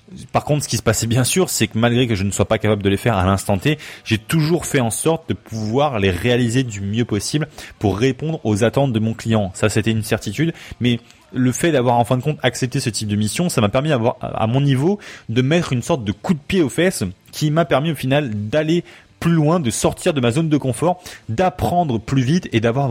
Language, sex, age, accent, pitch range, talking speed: French, male, 20-39, French, 115-150 Hz, 250 wpm